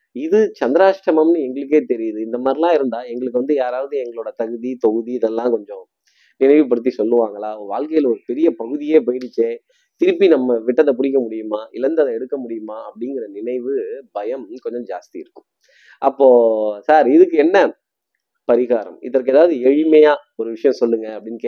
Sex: male